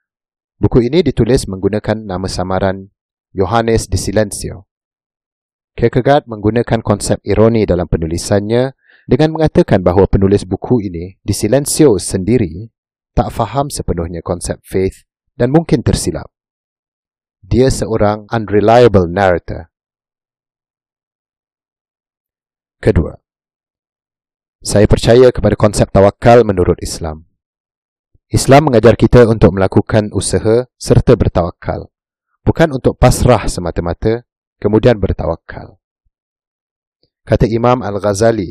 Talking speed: 95 wpm